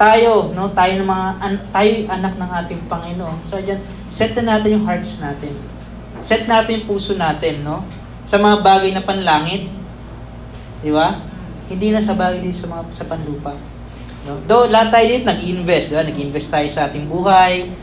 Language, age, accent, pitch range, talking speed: Filipino, 20-39, native, 155-195 Hz, 175 wpm